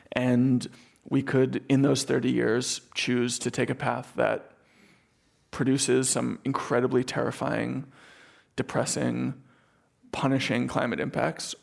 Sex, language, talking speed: male, English, 110 wpm